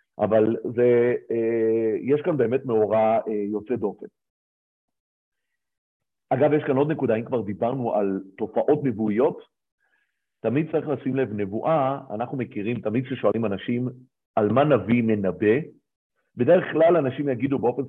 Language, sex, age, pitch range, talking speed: Hebrew, male, 50-69, 110-150 Hz, 130 wpm